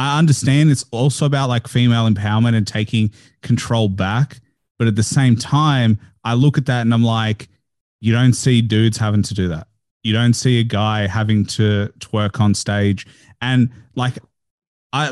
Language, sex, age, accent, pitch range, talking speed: English, male, 30-49, Australian, 110-135 Hz, 180 wpm